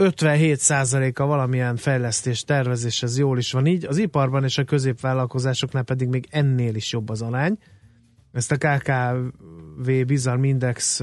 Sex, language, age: male, Hungarian, 30-49